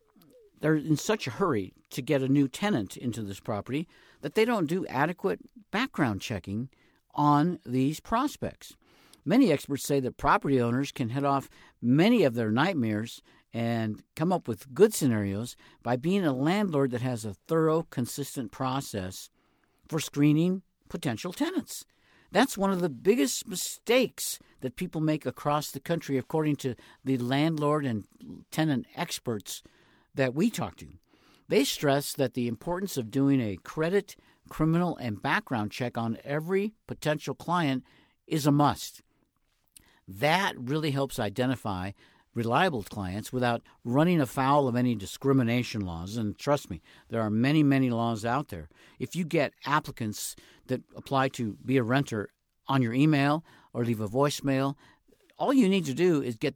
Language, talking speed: English, 155 wpm